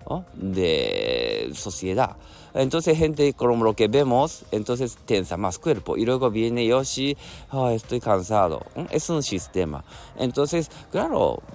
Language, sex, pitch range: Japanese, male, 100-145 Hz